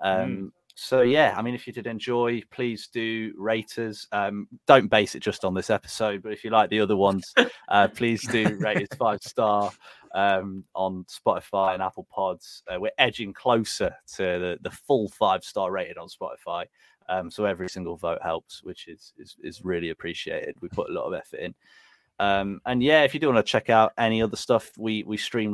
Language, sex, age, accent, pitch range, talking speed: English, male, 20-39, British, 95-115 Hz, 210 wpm